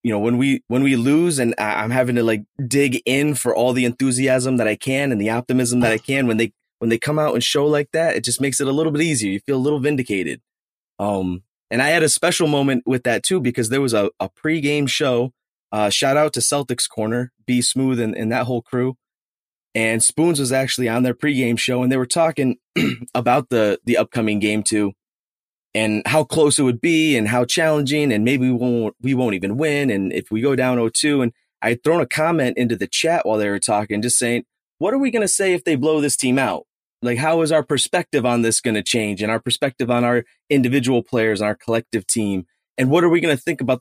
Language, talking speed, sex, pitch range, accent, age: English, 240 wpm, male, 115-145 Hz, American, 20-39